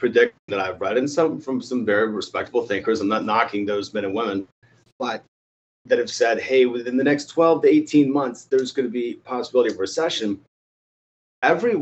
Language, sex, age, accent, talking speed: English, male, 30-49, American, 190 wpm